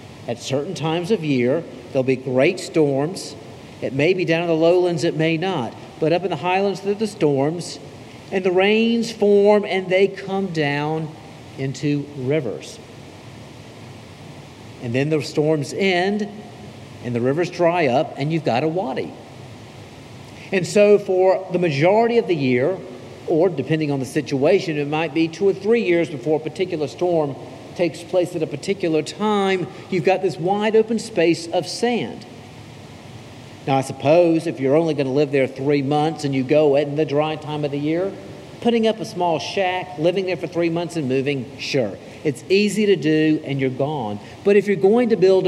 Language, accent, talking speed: English, American, 185 wpm